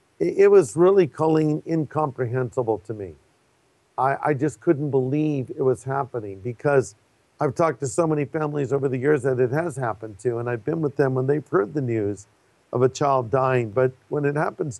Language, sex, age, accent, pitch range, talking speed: English, male, 50-69, American, 130-155 Hz, 195 wpm